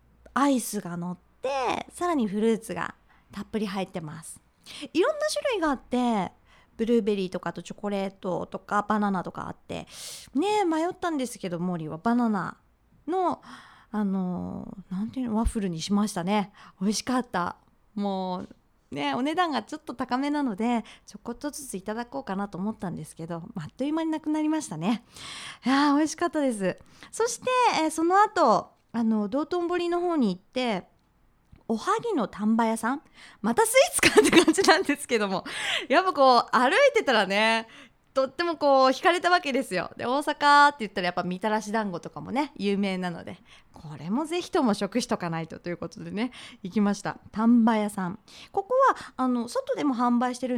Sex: female